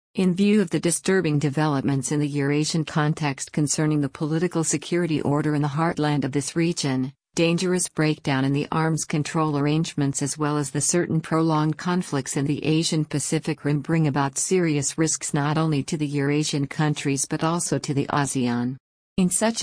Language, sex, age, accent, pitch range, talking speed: English, female, 50-69, American, 145-165 Hz, 175 wpm